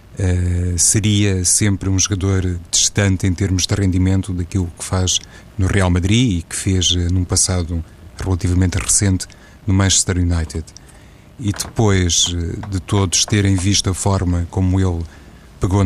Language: Portuguese